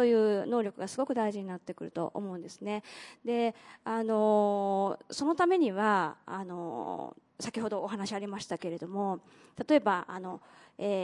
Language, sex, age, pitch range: Japanese, female, 20-39, 195-315 Hz